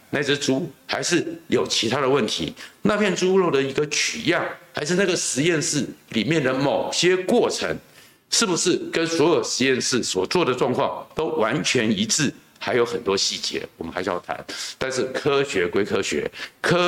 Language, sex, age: Chinese, male, 60-79